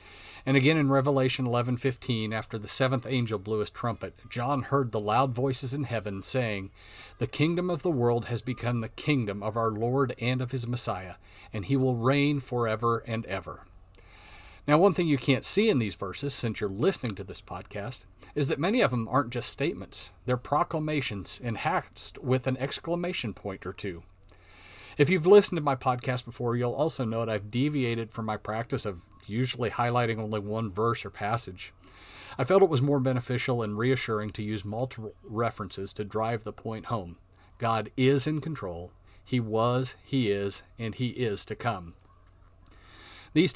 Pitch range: 100-130 Hz